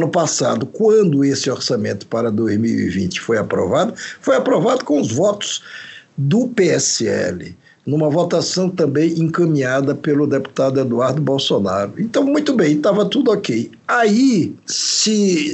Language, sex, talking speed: Portuguese, male, 125 wpm